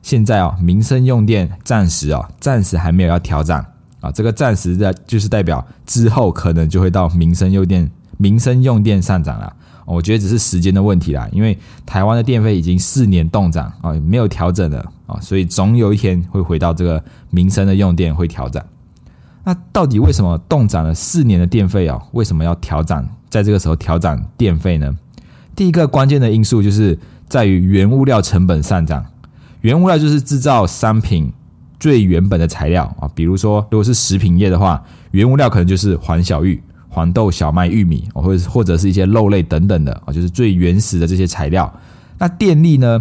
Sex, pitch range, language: male, 85-110 Hz, Chinese